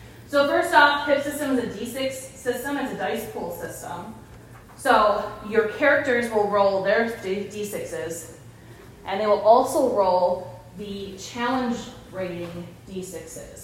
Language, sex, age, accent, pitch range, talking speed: English, female, 20-39, American, 185-240 Hz, 130 wpm